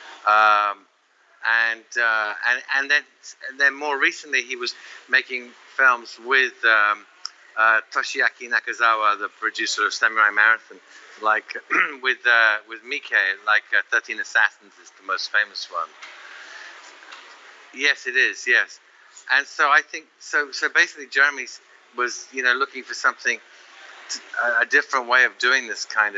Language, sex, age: English, male, 50-69